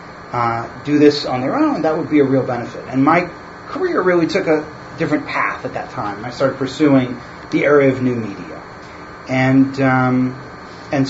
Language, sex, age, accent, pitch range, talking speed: English, male, 40-59, American, 125-150 Hz, 185 wpm